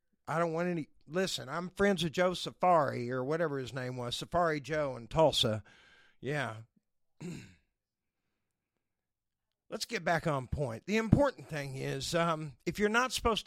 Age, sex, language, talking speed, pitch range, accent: 50-69, male, English, 150 wpm, 135-175 Hz, American